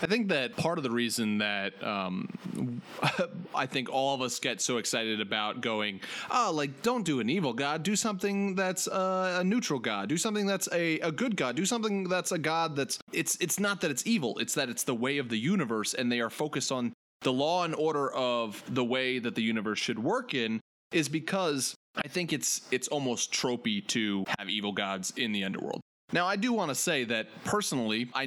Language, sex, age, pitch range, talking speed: English, male, 30-49, 125-190 Hz, 215 wpm